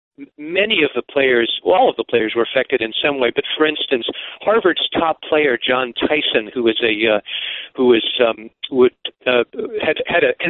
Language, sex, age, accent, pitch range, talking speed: English, male, 50-69, American, 120-150 Hz, 195 wpm